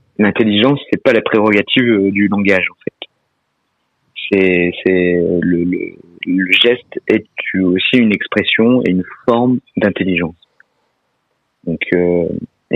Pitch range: 90-115 Hz